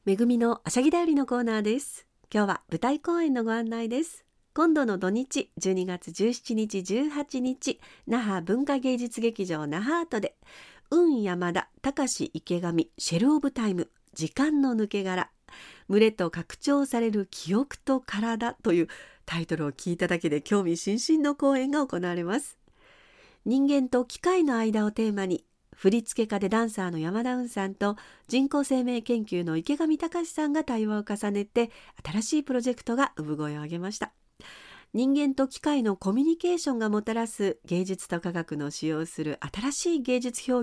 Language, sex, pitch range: Japanese, female, 185-270 Hz